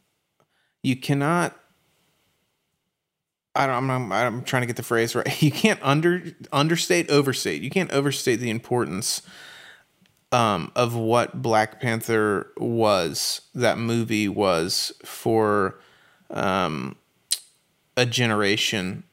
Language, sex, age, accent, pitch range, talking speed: English, male, 30-49, American, 110-130 Hz, 110 wpm